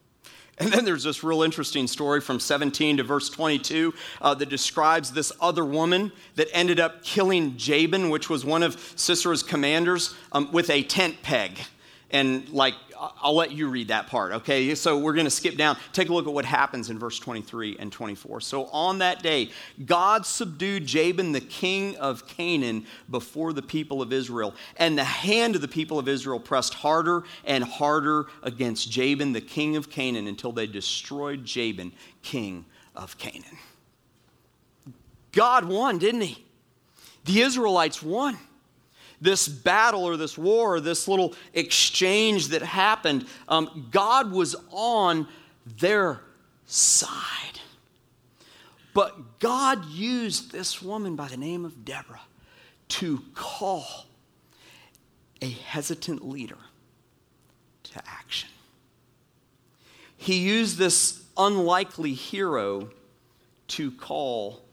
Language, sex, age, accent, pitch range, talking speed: English, male, 40-59, American, 130-175 Hz, 140 wpm